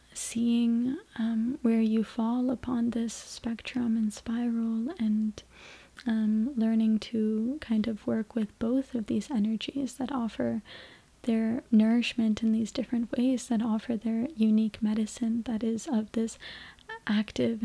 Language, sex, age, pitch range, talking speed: English, female, 20-39, 220-245 Hz, 135 wpm